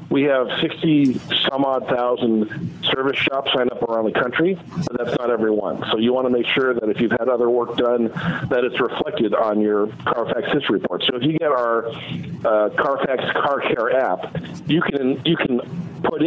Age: 50-69